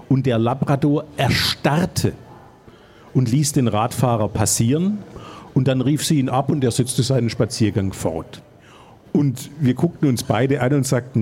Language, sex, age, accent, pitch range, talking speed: German, male, 50-69, German, 115-135 Hz, 155 wpm